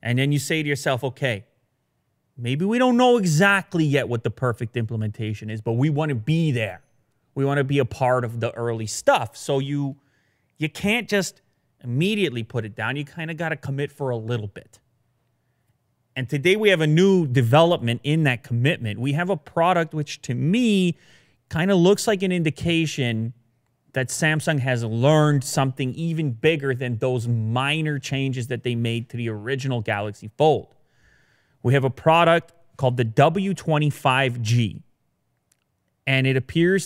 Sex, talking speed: male, 170 wpm